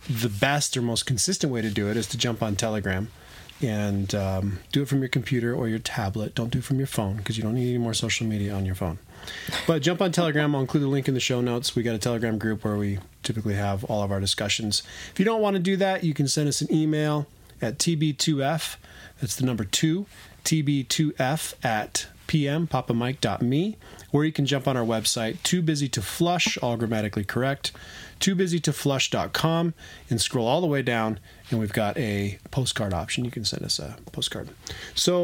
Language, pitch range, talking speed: English, 105-145 Hz, 210 wpm